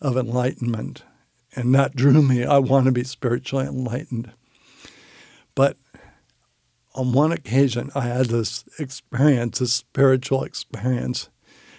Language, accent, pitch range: English, American, 125-145 Hz